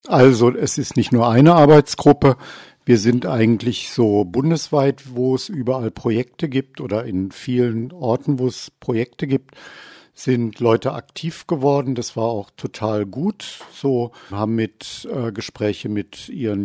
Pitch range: 115-140 Hz